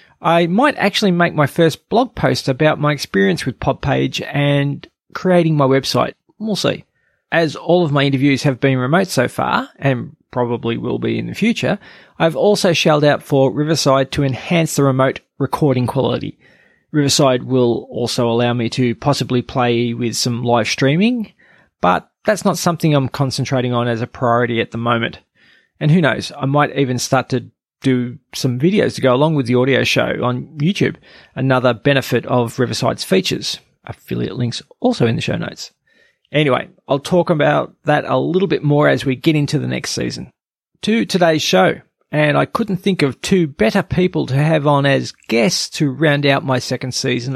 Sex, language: male, English